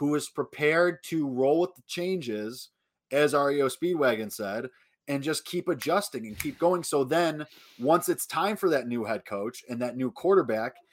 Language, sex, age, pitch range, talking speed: English, male, 20-39, 125-160 Hz, 180 wpm